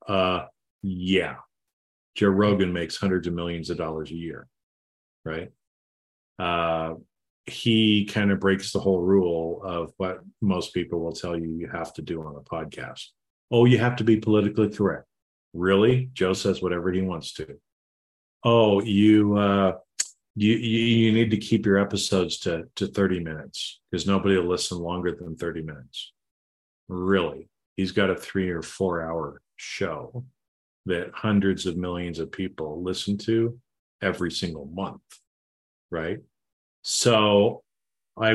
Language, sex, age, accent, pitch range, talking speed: English, male, 40-59, American, 85-105 Hz, 145 wpm